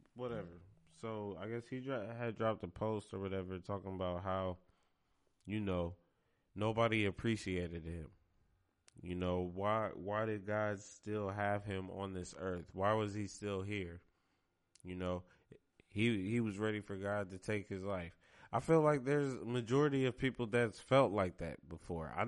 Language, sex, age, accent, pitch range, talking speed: English, male, 20-39, American, 90-125 Hz, 165 wpm